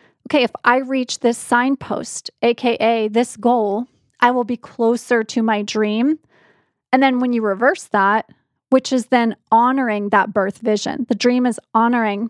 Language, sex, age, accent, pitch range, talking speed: English, female, 30-49, American, 225-255 Hz, 160 wpm